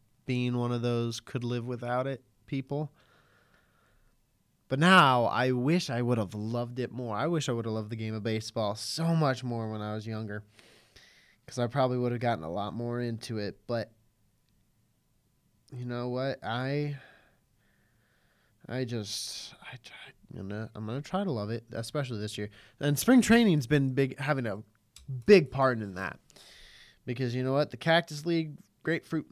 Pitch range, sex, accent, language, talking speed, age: 115-150 Hz, male, American, English, 170 wpm, 20-39